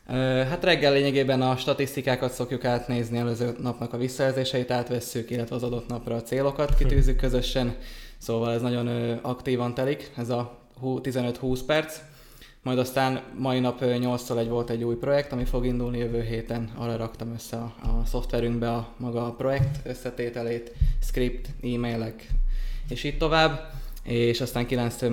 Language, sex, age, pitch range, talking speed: Hungarian, male, 20-39, 120-130 Hz, 150 wpm